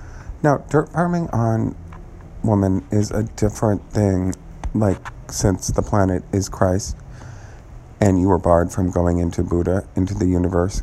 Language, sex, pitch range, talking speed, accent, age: English, male, 90-115 Hz, 145 wpm, American, 40-59